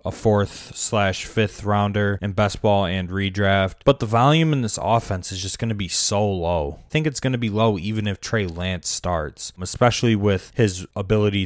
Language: English